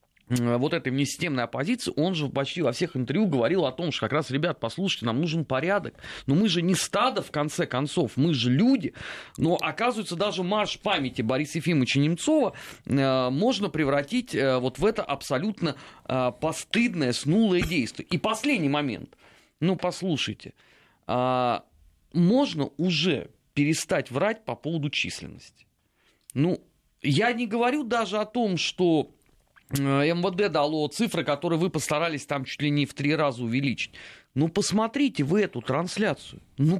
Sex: male